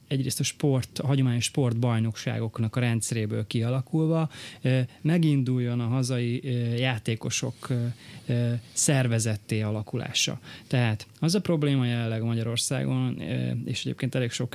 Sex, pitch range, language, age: male, 115-140 Hz, Hungarian, 30-49